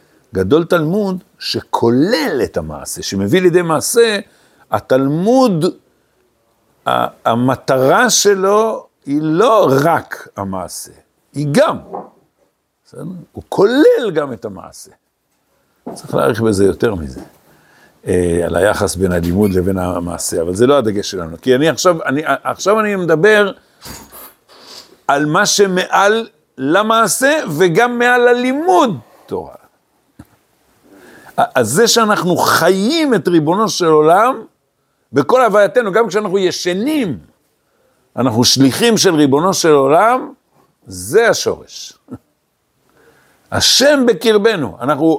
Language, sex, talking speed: Hebrew, male, 100 wpm